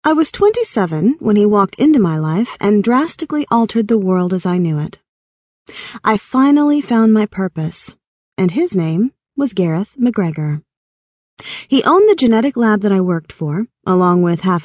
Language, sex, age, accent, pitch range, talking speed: English, female, 30-49, American, 175-230 Hz, 170 wpm